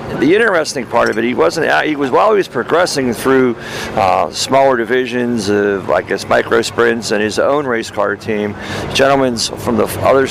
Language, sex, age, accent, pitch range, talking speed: English, male, 50-69, American, 115-145 Hz, 200 wpm